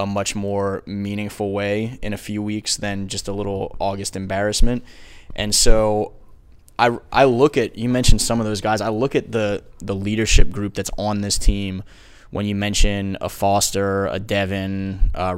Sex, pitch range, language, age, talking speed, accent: male, 95-105 Hz, English, 20-39, 180 wpm, American